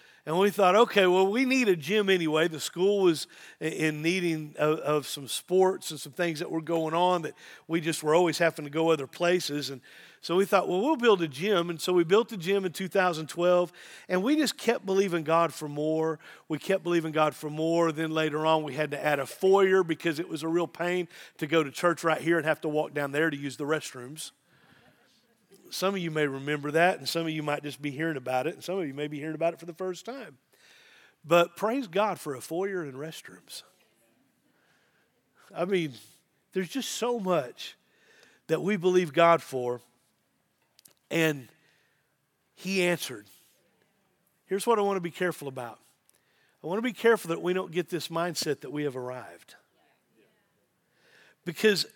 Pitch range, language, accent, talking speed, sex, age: 155-185 Hz, English, American, 200 wpm, male, 40-59